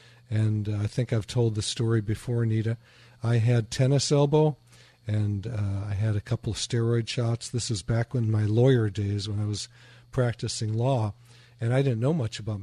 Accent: American